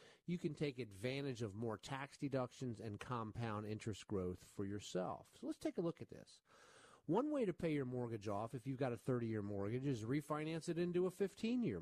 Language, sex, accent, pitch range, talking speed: English, male, American, 115-150 Hz, 205 wpm